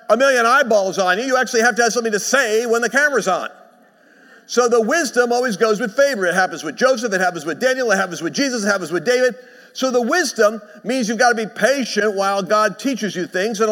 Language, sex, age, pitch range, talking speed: English, male, 50-69, 200-240 Hz, 240 wpm